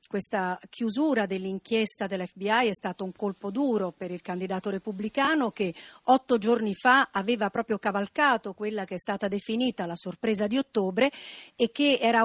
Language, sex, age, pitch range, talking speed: Italian, female, 50-69, 210-270 Hz, 155 wpm